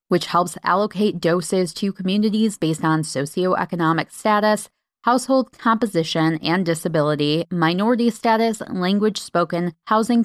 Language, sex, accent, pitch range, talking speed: English, female, American, 160-215 Hz, 110 wpm